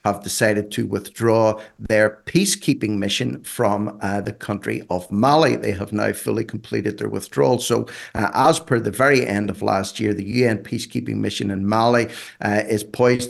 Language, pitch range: English, 95-115 Hz